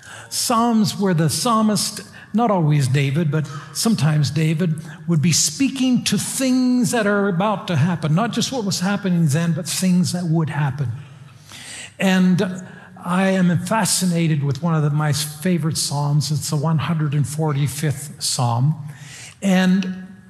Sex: male